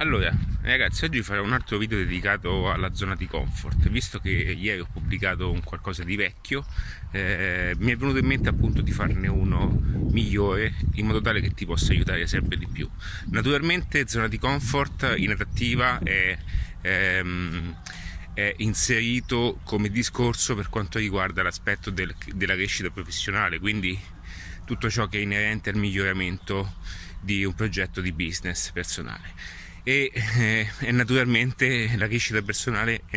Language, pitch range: Italian, 90-115 Hz